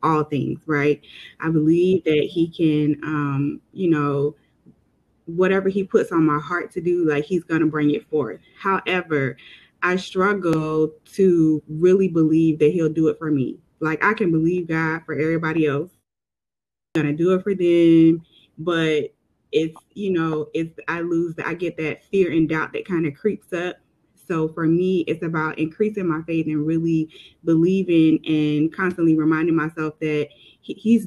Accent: American